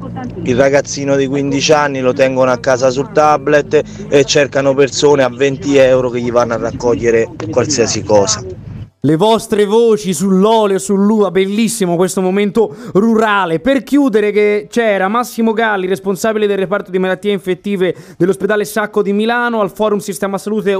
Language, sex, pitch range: Italian, male, 180-225 Hz